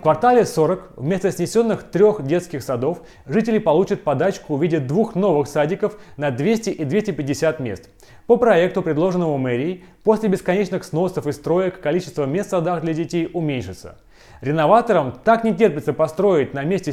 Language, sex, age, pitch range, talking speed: Russian, male, 30-49, 145-200 Hz, 155 wpm